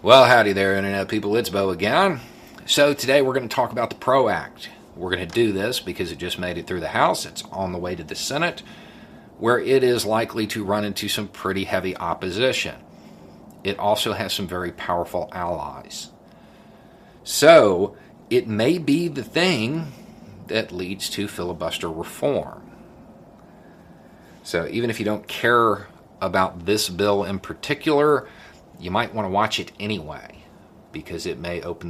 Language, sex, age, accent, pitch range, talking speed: English, male, 40-59, American, 90-115 Hz, 165 wpm